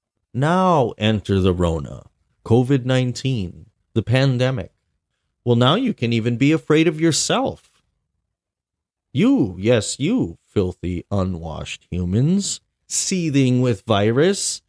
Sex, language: male, English